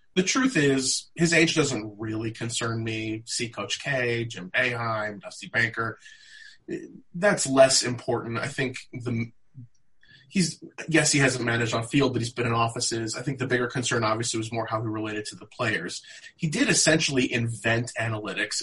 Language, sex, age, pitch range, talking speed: English, male, 20-39, 115-155 Hz, 175 wpm